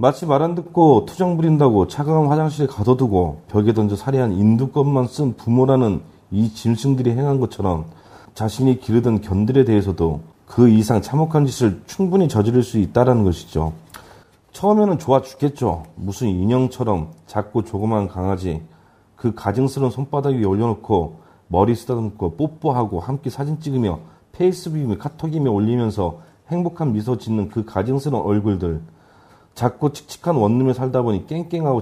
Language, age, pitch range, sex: Korean, 40-59, 100-135 Hz, male